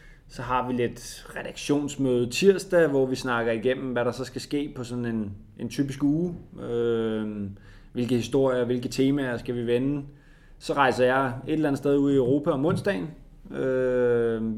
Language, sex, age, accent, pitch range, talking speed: Danish, male, 20-39, native, 115-145 Hz, 175 wpm